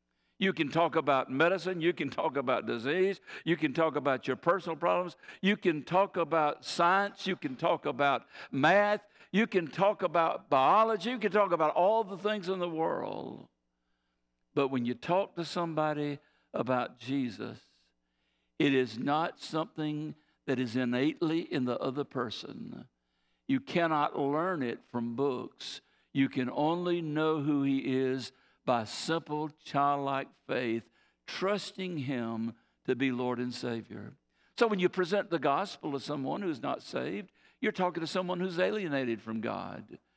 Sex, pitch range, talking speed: male, 135-185 Hz, 155 wpm